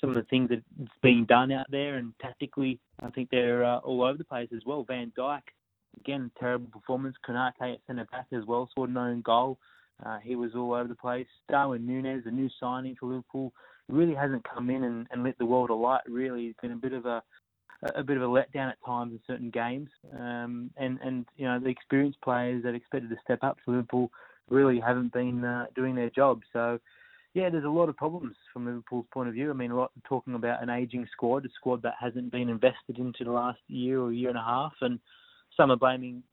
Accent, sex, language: Australian, male, English